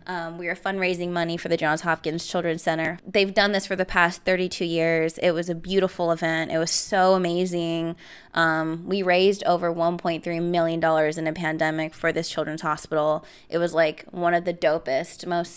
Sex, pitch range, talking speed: female, 165-195 Hz, 190 wpm